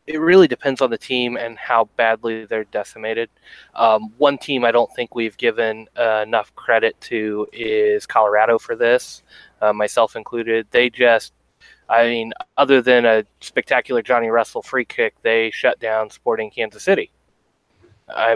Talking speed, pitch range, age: 160 wpm, 110-140 Hz, 20-39